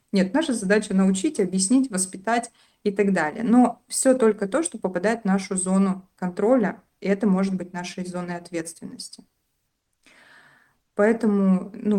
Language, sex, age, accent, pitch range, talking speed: Russian, female, 20-39, native, 180-210 Hz, 140 wpm